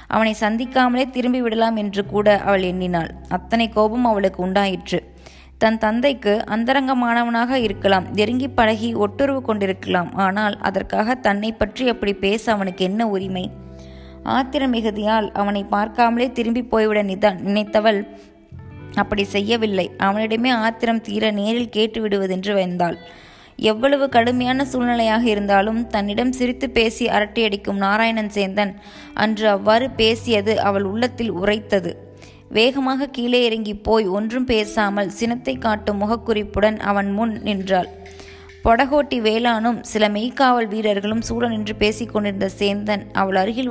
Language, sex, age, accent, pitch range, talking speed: Tamil, female, 20-39, native, 200-235 Hz, 115 wpm